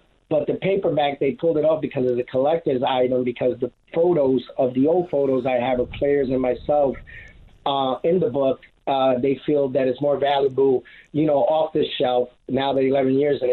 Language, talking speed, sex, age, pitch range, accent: English, 205 wpm, male, 30-49, 125-150 Hz, American